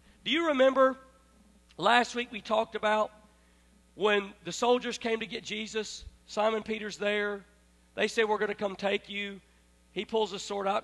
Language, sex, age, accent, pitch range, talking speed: English, male, 40-59, American, 170-230 Hz, 170 wpm